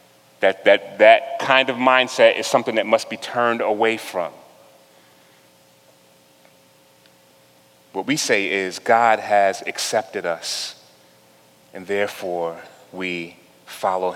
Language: English